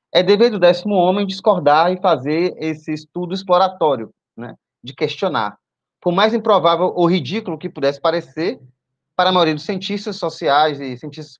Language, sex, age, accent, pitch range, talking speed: Portuguese, male, 20-39, Brazilian, 150-190 Hz, 160 wpm